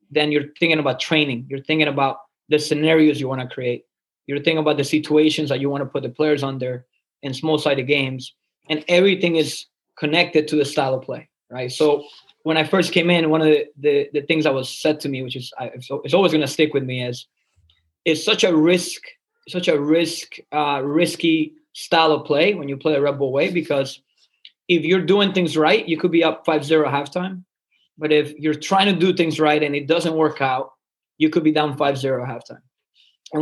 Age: 20-39